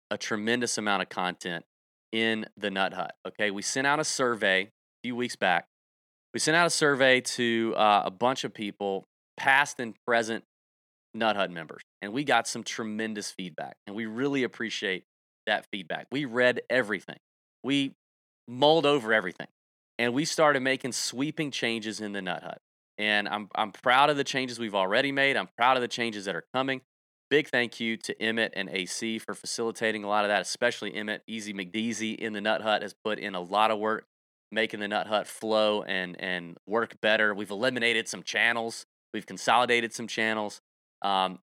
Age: 30-49